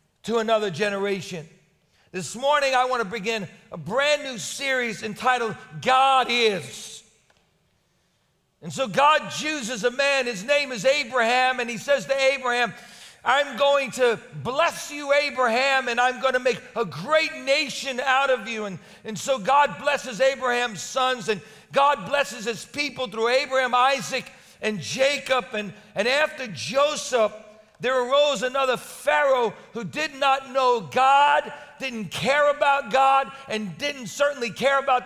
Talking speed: 150 wpm